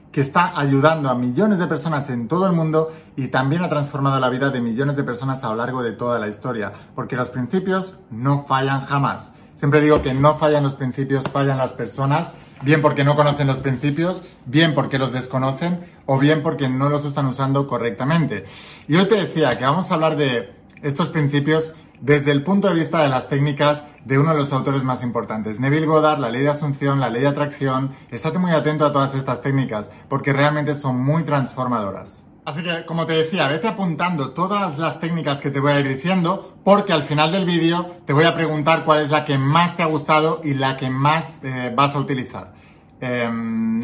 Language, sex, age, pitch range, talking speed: Spanish, male, 30-49, 130-160 Hz, 210 wpm